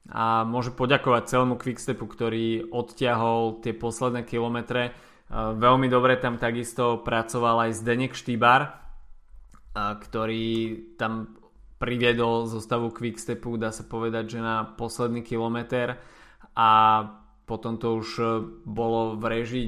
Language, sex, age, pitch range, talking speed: Slovak, male, 20-39, 115-125 Hz, 115 wpm